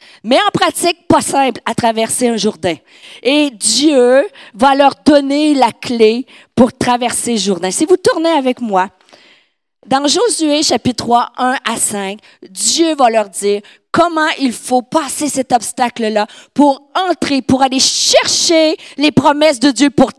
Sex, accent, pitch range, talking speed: female, Canadian, 225-295 Hz, 150 wpm